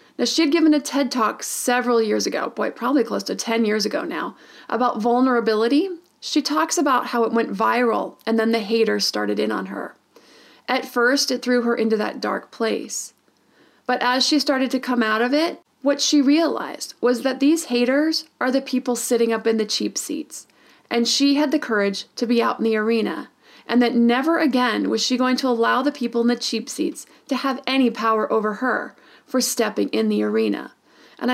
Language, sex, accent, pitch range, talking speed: English, female, American, 225-275 Hz, 205 wpm